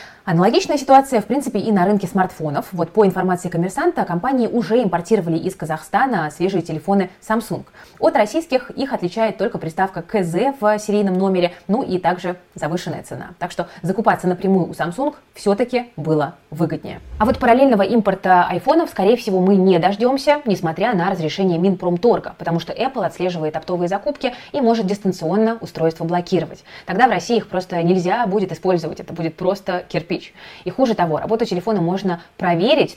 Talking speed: 160 wpm